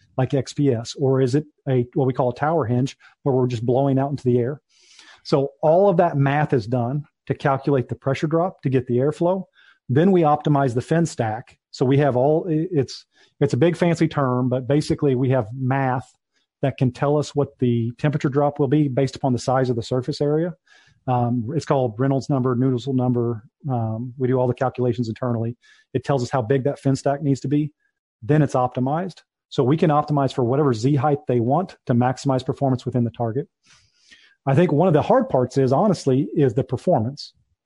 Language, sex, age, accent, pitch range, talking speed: English, male, 40-59, American, 125-150 Hz, 205 wpm